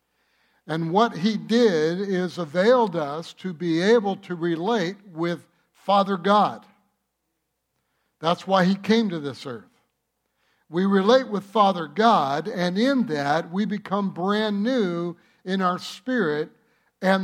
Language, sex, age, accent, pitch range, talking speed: English, male, 60-79, American, 180-230 Hz, 130 wpm